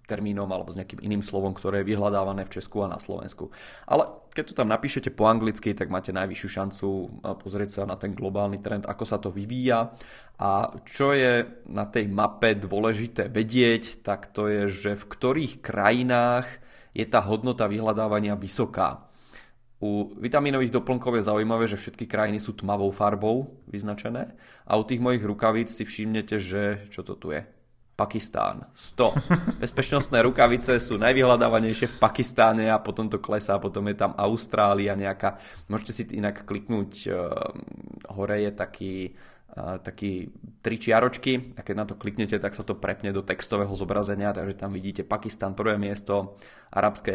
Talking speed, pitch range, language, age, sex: 160 wpm, 100-115 Hz, Czech, 20-39, male